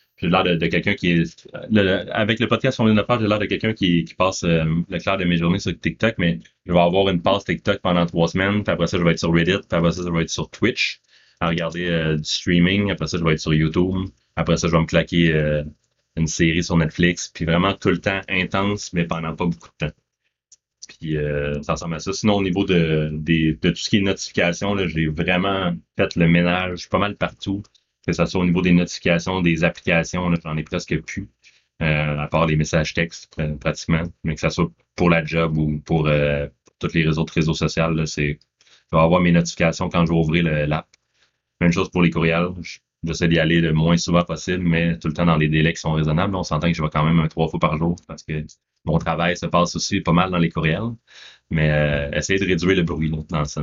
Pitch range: 80-90 Hz